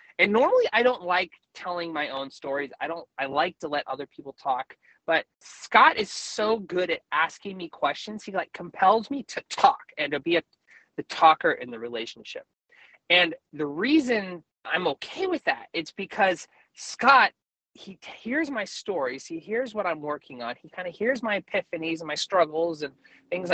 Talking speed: 185 wpm